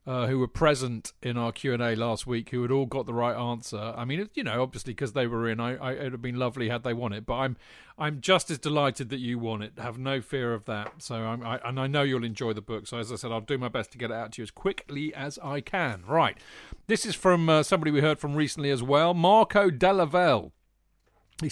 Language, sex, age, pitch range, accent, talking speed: English, male, 40-59, 120-170 Hz, British, 270 wpm